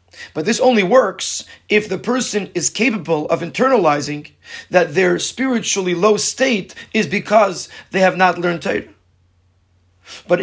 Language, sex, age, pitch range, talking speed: English, male, 30-49, 155-215 Hz, 140 wpm